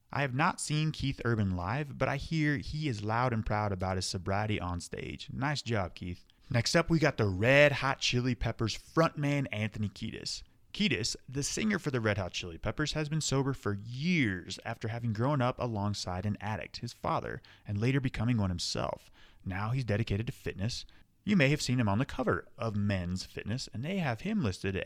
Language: English